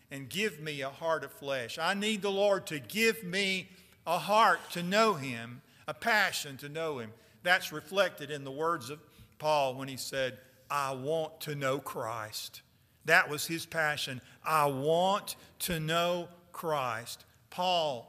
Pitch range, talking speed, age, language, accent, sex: 115-155 Hz, 165 wpm, 50-69, English, American, male